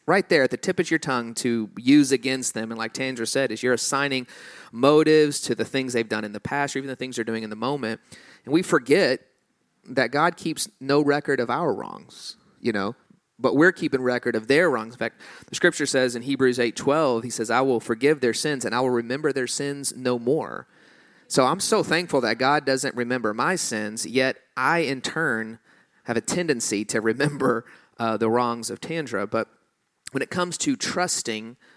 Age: 30-49